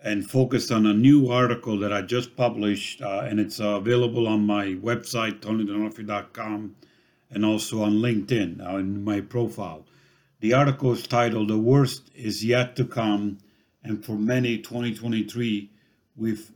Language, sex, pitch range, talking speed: English, male, 110-130 Hz, 150 wpm